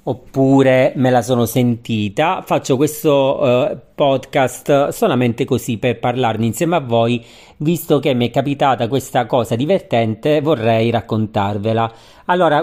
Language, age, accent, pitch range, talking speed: Italian, 40-59, native, 120-150 Hz, 125 wpm